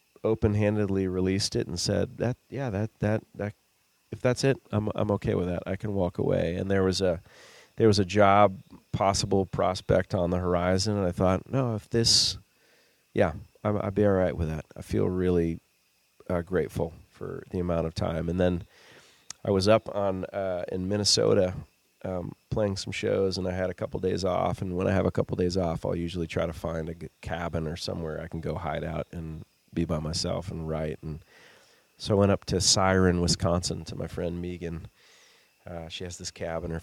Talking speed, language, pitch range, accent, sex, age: 205 wpm, English, 85-105 Hz, American, male, 30-49